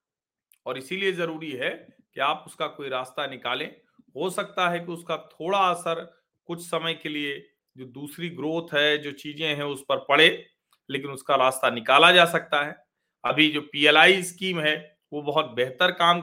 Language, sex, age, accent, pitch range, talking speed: Hindi, male, 40-59, native, 135-180 Hz, 175 wpm